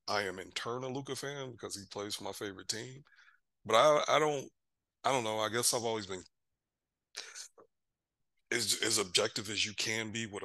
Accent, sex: American, male